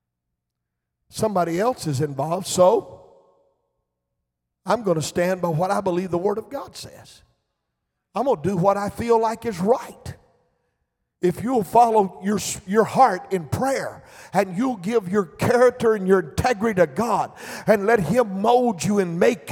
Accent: American